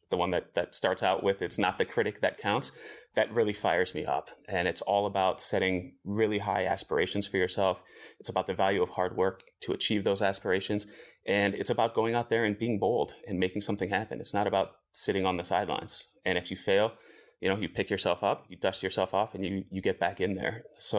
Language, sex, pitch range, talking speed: English, male, 95-115 Hz, 230 wpm